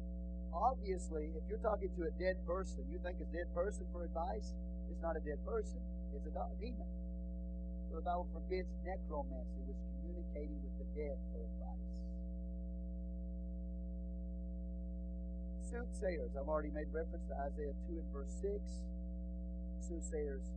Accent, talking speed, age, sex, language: American, 145 wpm, 40-59, male, English